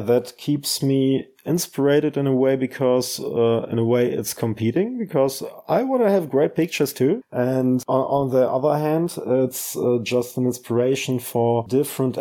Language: English